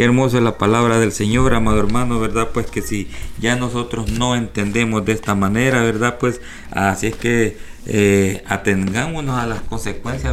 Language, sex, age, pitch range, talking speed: English, male, 50-69, 100-115 Hz, 165 wpm